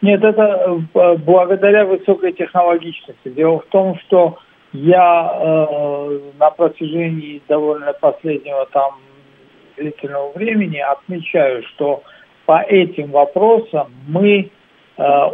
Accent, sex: native, male